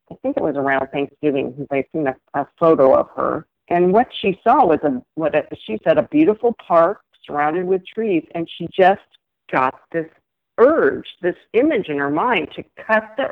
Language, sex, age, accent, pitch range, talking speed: English, female, 50-69, American, 145-180 Hz, 200 wpm